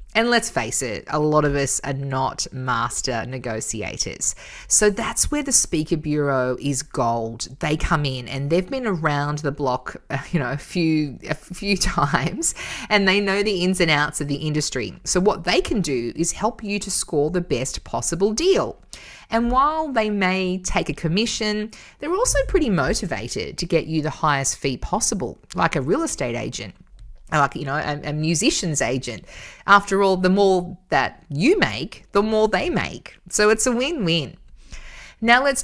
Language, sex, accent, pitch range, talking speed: English, female, Australian, 140-205 Hz, 180 wpm